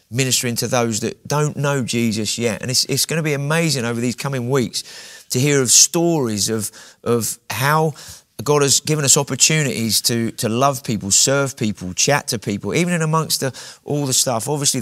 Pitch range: 110-140 Hz